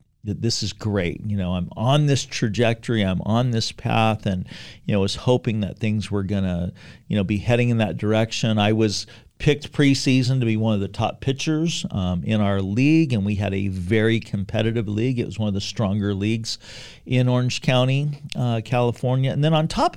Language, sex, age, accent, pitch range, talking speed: English, male, 40-59, American, 100-125 Hz, 205 wpm